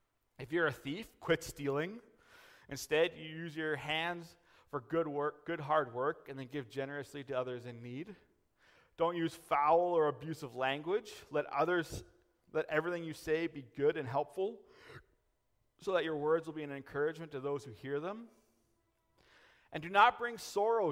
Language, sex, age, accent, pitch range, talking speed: English, male, 30-49, American, 135-185 Hz, 175 wpm